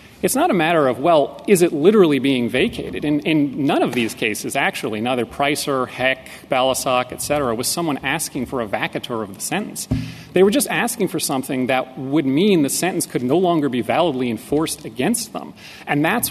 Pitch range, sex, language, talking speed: 135-195 Hz, male, English, 200 wpm